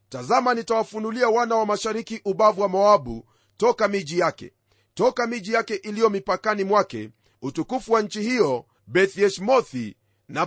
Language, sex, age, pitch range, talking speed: Swahili, male, 40-59, 145-230 Hz, 130 wpm